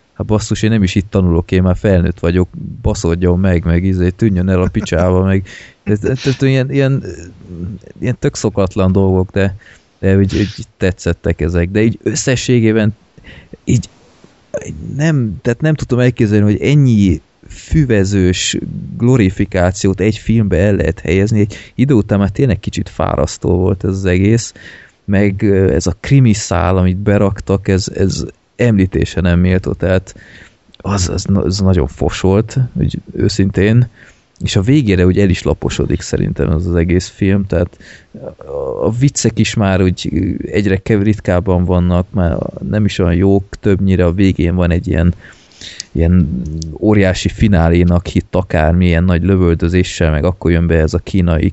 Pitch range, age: 90-110 Hz, 30-49